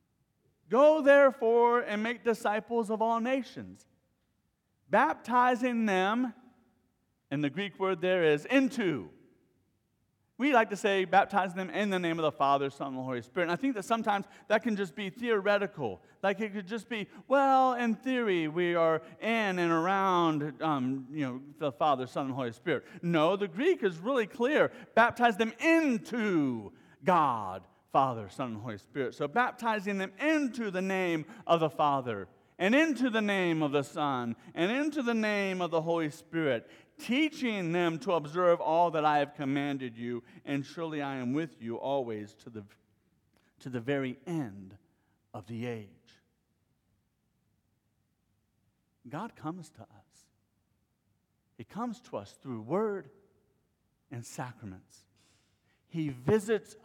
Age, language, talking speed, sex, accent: 40-59, English, 155 wpm, male, American